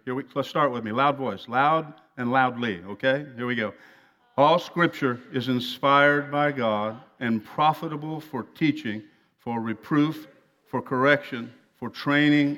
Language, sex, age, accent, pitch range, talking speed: English, male, 50-69, American, 125-145 Hz, 150 wpm